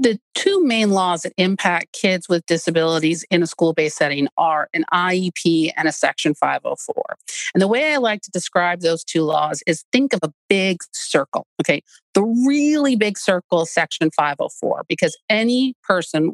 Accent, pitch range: American, 165-215 Hz